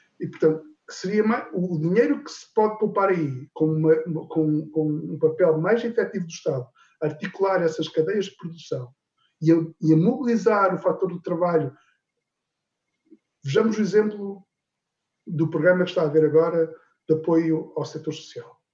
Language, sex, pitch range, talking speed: Portuguese, male, 150-180 Hz, 155 wpm